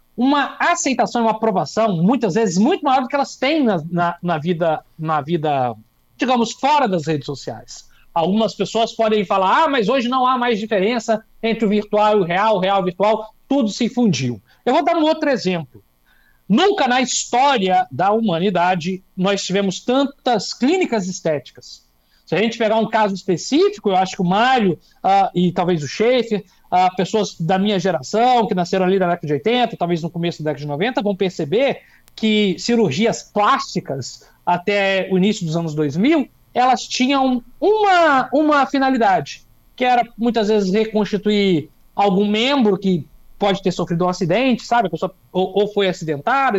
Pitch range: 180-240 Hz